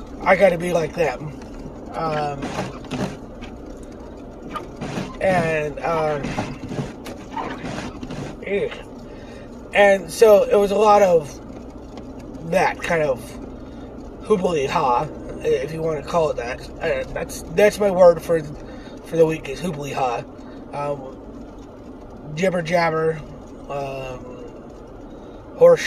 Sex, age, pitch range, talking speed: male, 20-39, 155-200 Hz, 95 wpm